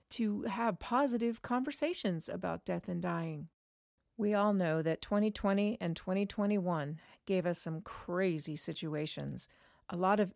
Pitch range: 175-215 Hz